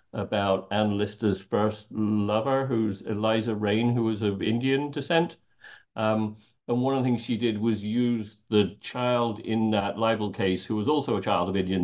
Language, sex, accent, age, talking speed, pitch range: English, male, British, 50-69, 180 wpm, 95-120 Hz